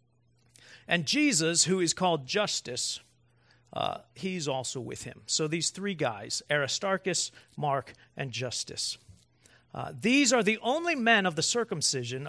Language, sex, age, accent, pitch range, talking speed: English, male, 40-59, American, 130-190 Hz, 135 wpm